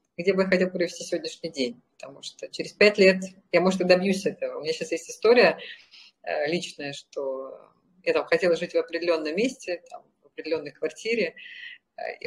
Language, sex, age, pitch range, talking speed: Russian, female, 30-49, 165-230 Hz, 175 wpm